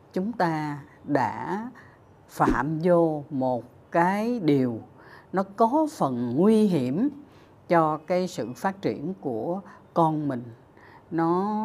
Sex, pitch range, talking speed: female, 135-190 Hz, 115 wpm